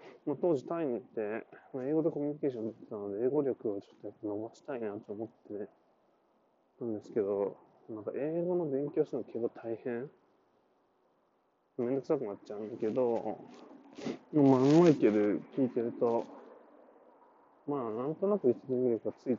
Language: Japanese